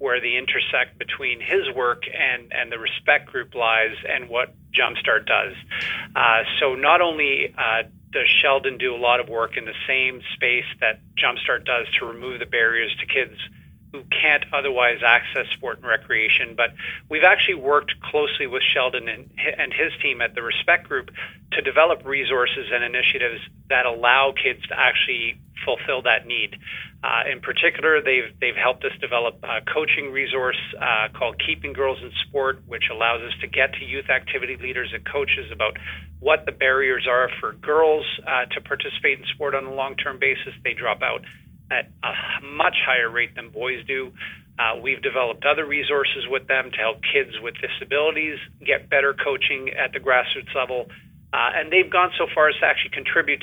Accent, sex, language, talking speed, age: American, male, English, 180 wpm, 40-59